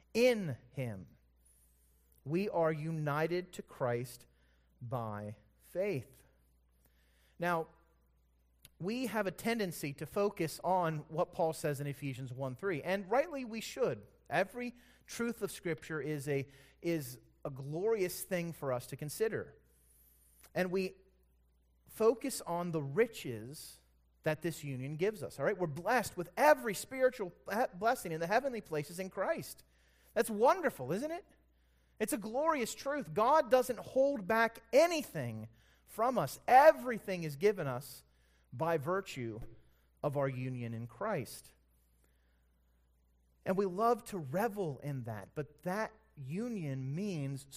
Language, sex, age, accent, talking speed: English, male, 40-59, American, 130 wpm